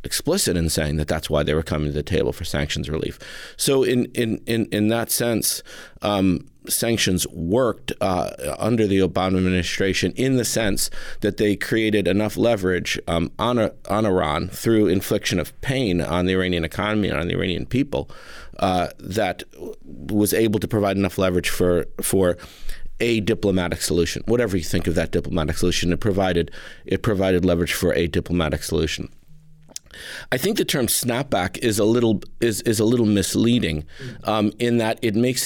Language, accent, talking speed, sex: English, American, 175 wpm, male